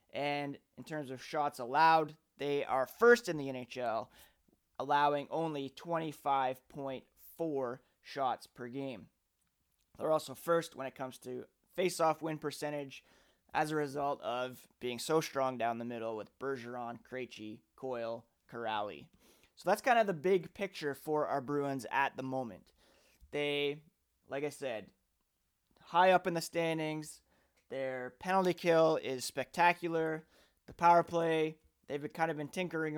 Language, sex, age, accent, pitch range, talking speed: English, male, 30-49, American, 135-165 Hz, 140 wpm